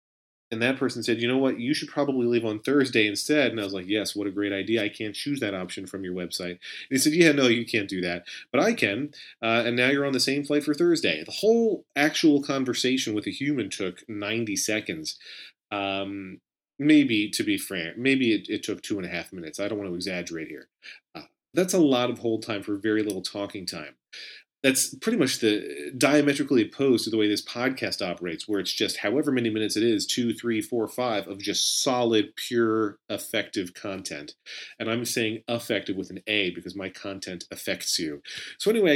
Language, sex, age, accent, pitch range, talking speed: English, male, 30-49, American, 100-135 Hz, 215 wpm